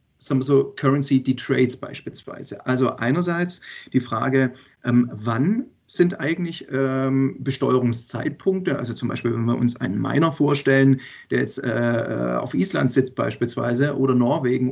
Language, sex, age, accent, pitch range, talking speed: German, male, 40-59, German, 125-150 Hz, 120 wpm